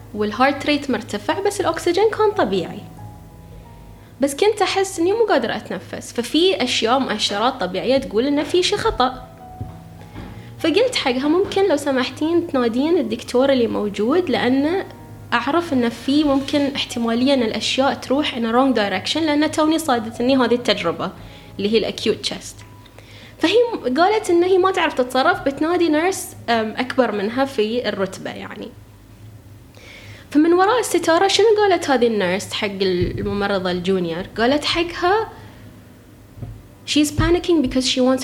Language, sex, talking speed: Arabic, female, 130 wpm